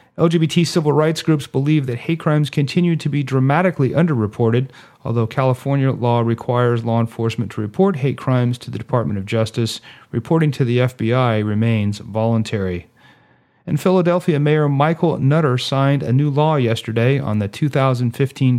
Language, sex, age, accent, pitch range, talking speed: English, male, 40-59, American, 120-150 Hz, 150 wpm